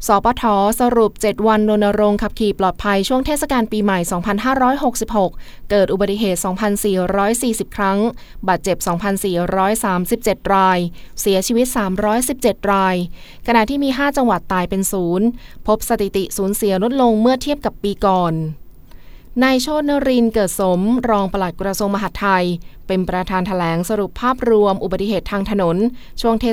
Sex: female